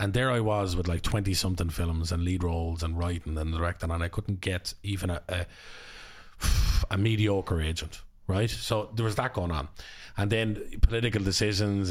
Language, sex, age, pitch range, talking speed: English, male, 30-49, 85-105 Hz, 180 wpm